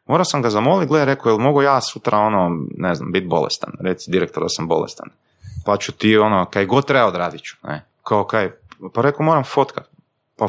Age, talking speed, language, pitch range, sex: 30-49, 210 wpm, Croatian, 105-140 Hz, male